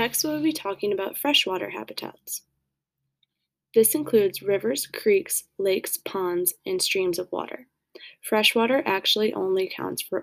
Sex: female